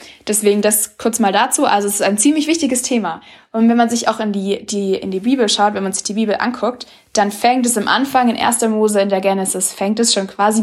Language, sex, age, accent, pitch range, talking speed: German, female, 20-39, German, 195-235 Hz, 260 wpm